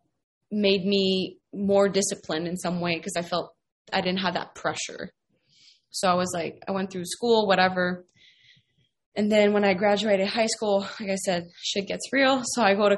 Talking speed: 190 wpm